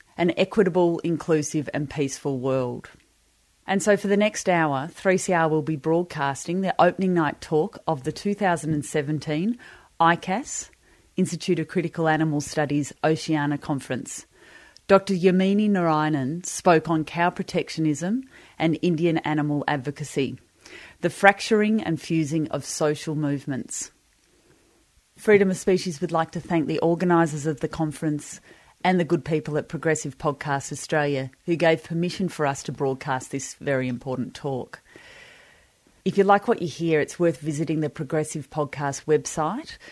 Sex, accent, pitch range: female, Australian, 145-175 Hz